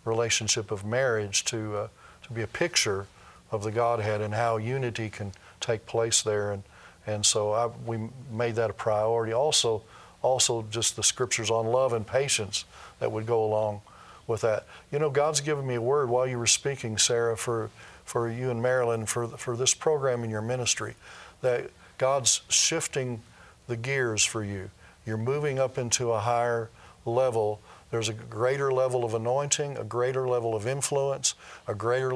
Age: 40-59